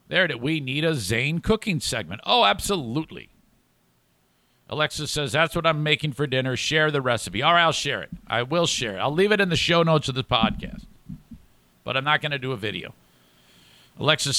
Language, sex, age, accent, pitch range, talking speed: English, male, 50-69, American, 125-165 Hz, 210 wpm